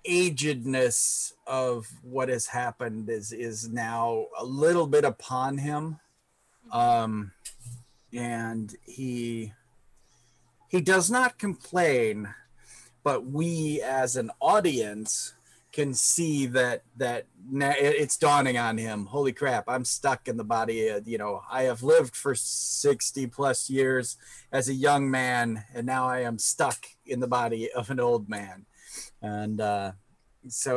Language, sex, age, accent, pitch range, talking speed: English, male, 30-49, American, 115-135 Hz, 135 wpm